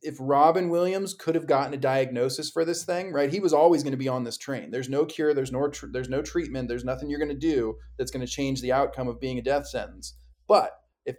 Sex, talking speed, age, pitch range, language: male, 255 wpm, 20-39, 130-160 Hz, English